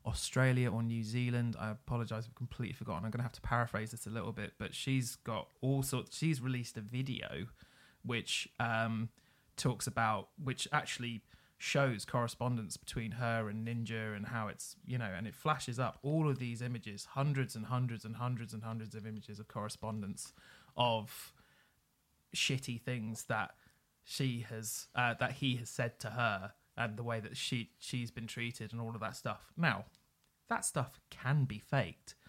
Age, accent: 20-39, British